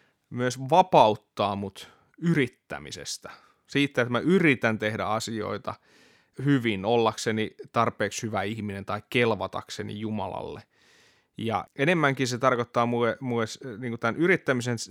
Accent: native